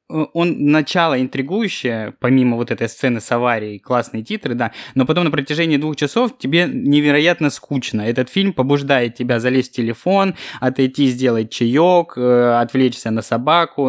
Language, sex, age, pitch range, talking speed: Russian, male, 20-39, 125-150 Hz, 145 wpm